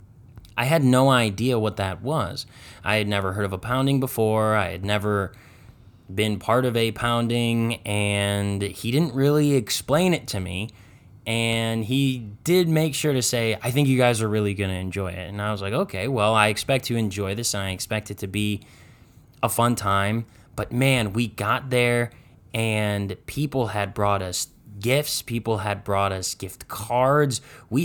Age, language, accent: 20-39, English, American